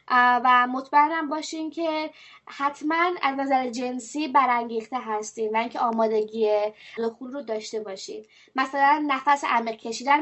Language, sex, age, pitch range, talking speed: English, female, 20-39, 245-305 Hz, 125 wpm